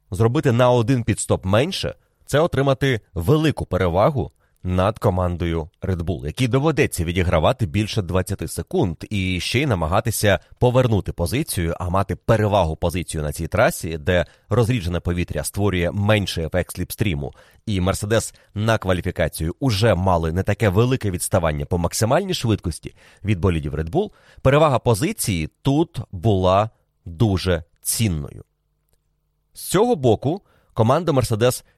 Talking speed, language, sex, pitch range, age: 130 wpm, Ukrainian, male, 85-115 Hz, 30-49